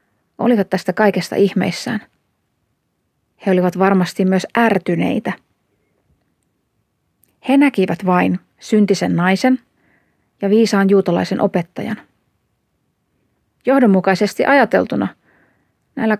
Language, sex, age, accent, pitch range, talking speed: Finnish, female, 30-49, native, 190-235 Hz, 80 wpm